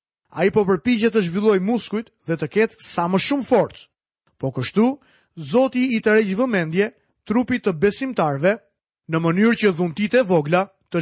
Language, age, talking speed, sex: Croatian, 30-49, 165 wpm, male